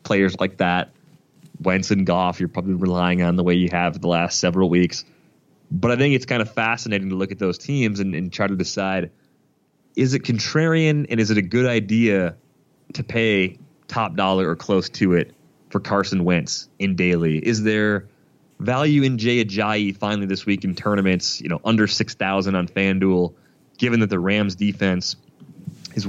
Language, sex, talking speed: English, male, 185 wpm